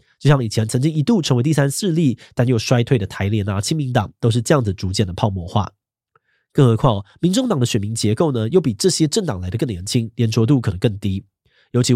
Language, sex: Chinese, male